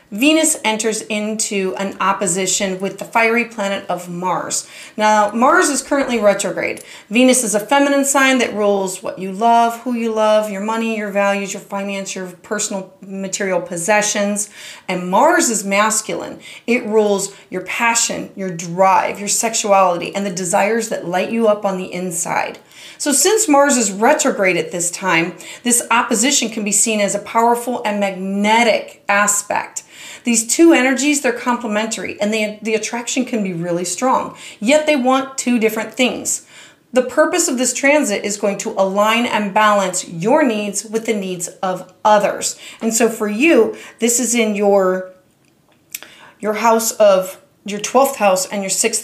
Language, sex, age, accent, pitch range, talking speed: English, female, 30-49, American, 195-235 Hz, 165 wpm